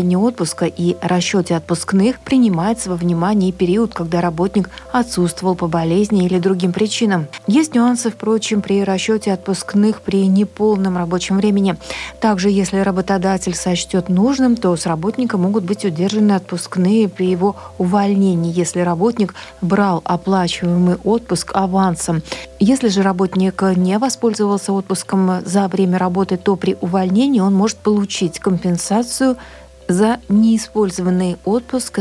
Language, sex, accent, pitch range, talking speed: Russian, female, native, 185-215 Hz, 125 wpm